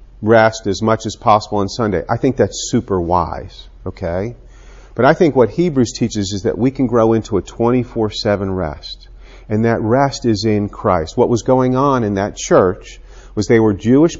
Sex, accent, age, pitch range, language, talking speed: male, American, 50-69, 105-125 Hz, English, 190 wpm